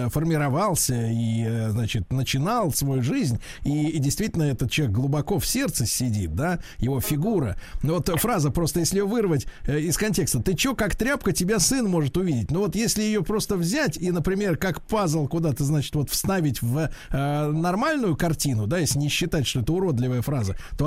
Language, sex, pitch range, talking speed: Russian, male, 140-200 Hz, 175 wpm